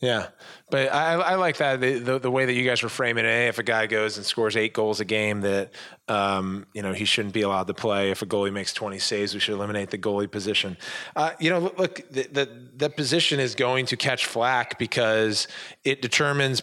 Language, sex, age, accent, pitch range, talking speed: English, male, 20-39, American, 105-130 Hz, 235 wpm